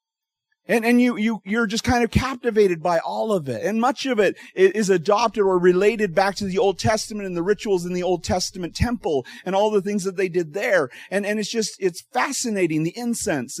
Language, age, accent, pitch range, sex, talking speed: English, 40-59, American, 145-220 Hz, male, 220 wpm